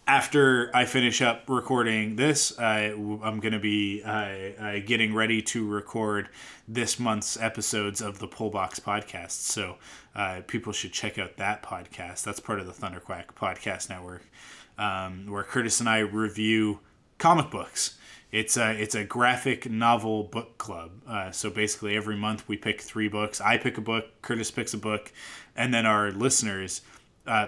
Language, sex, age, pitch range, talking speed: English, male, 20-39, 105-120 Hz, 160 wpm